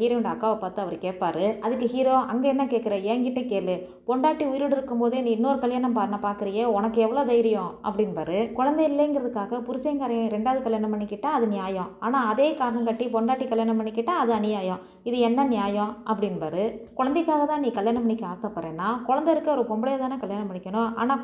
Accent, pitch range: native, 210-245 Hz